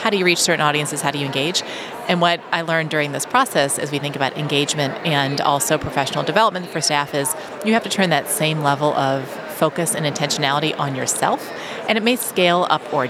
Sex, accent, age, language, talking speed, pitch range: female, American, 30-49, English, 220 wpm, 145-185 Hz